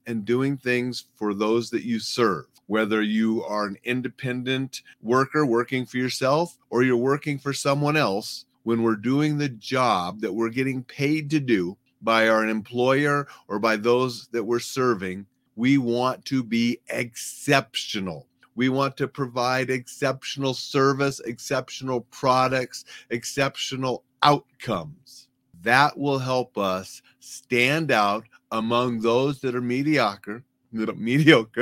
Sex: male